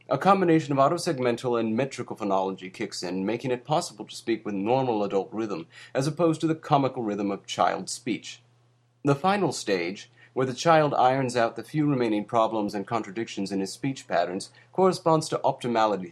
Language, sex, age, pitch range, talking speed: English, male, 30-49, 105-145 Hz, 180 wpm